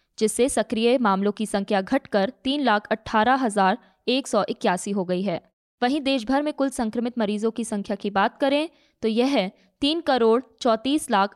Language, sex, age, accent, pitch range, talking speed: Hindi, female, 20-39, native, 205-265 Hz, 180 wpm